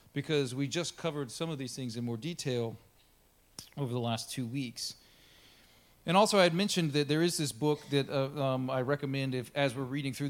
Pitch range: 120-145 Hz